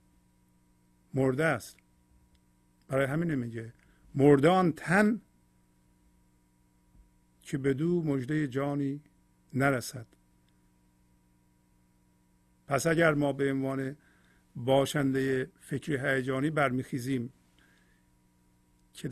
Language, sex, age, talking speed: Persian, male, 50-69, 70 wpm